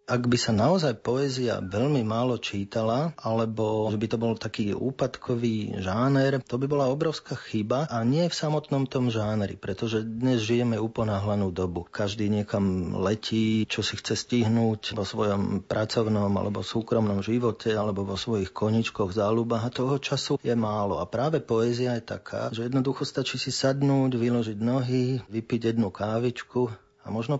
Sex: male